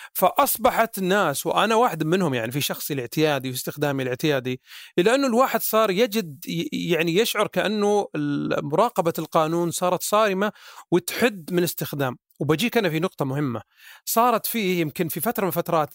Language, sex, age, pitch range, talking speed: Arabic, male, 30-49, 155-220 Hz, 140 wpm